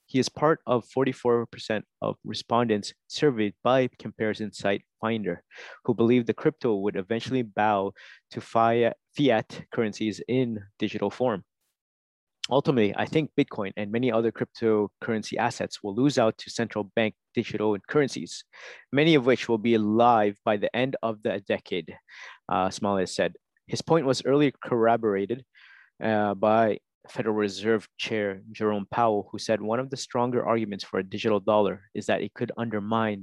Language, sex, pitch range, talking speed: English, male, 105-125 Hz, 155 wpm